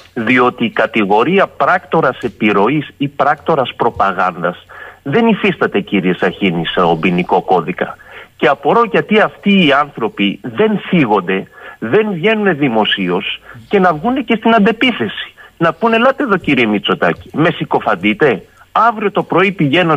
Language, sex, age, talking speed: Greek, male, 40-59, 130 wpm